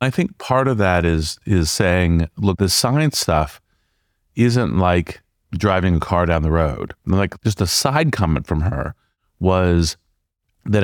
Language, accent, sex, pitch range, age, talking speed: English, American, male, 85-105 Hz, 40-59, 165 wpm